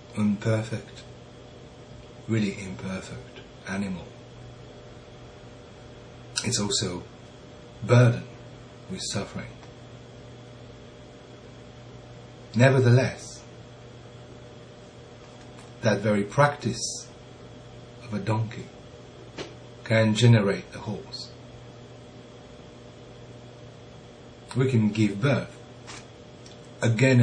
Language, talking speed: English, 55 wpm